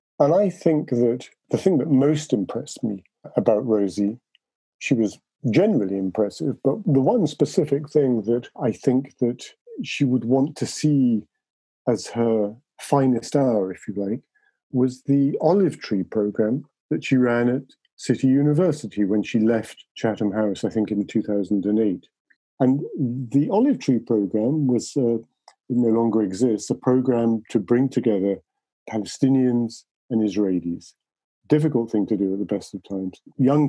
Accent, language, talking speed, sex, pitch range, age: British, English, 150 wpm, male, 105-135 Hz, 50-69